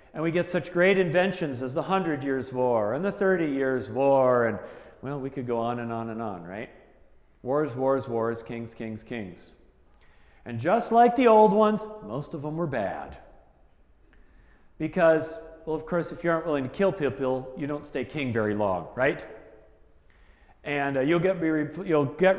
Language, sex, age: English, male, 40-59